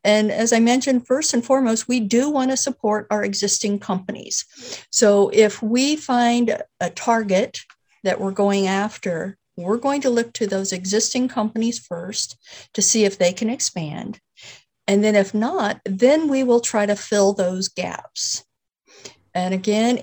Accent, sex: American, female